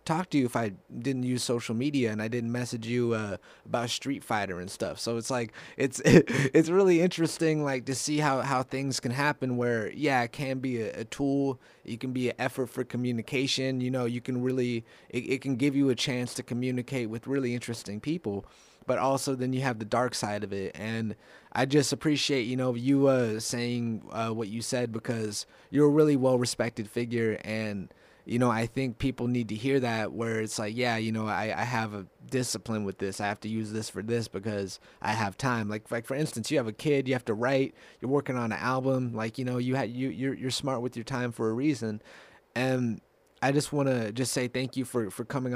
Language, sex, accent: English, male, American